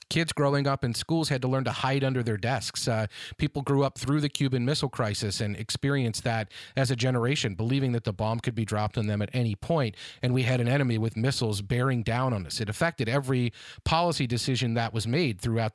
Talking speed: 230 wpm